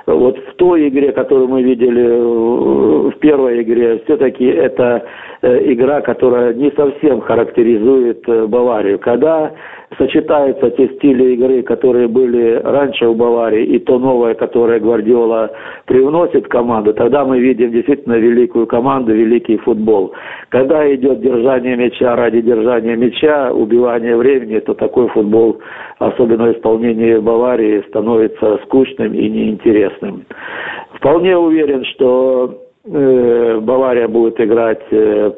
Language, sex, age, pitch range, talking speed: Russian, male, 50-69, 115-145 Hz, 115 wpm